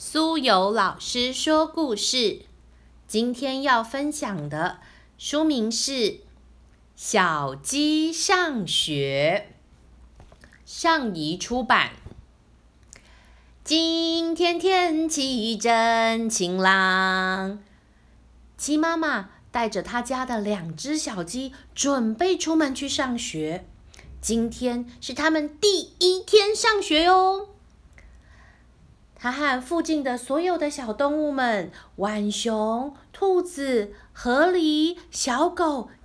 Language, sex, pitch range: Chinese, female, 190-310 Hz